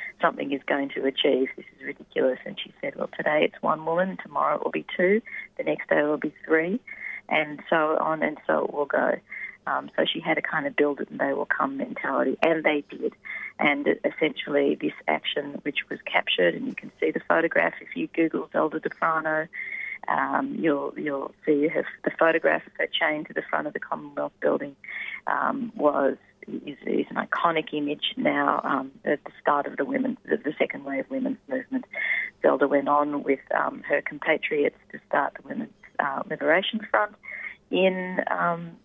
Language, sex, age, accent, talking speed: English, female, 30-49, Australian, 195 wpm